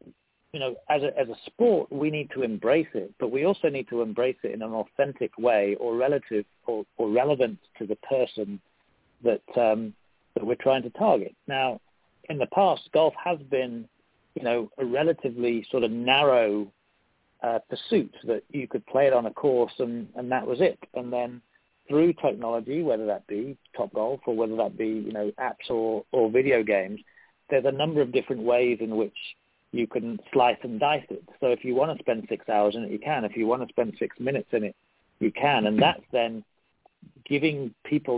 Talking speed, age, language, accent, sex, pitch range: 205 wpm, 40-59, English, British, male, 110-130 Hz